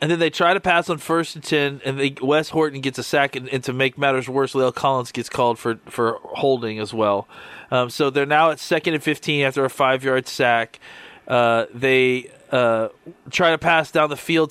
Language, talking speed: English, 225 wpm